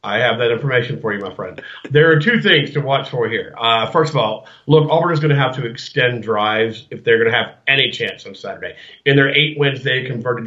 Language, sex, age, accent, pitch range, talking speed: English, male, 40-59, American, 120-145 Hz, 250 wpm